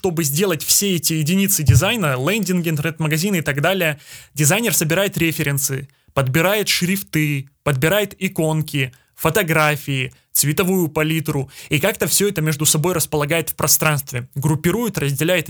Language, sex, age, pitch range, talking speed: Russian, male, 20-39, 150-185 Hz, 130 wpm